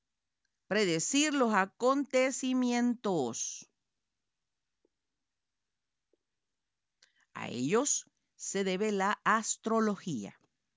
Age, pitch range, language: 50-69, 175-245 Hz, Spanish